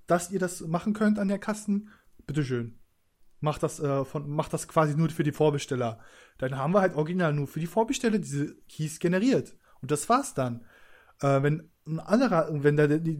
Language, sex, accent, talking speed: German, male, German, 185 wpm